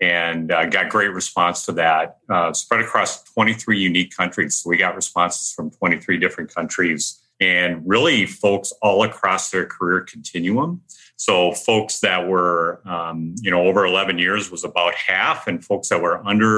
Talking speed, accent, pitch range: 170 wpm, American, 85-105 Hz